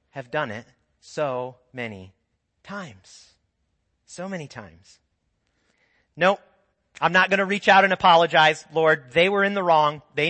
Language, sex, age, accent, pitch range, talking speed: English, male, 40-59, American, 120-195 Hz, 150 wpm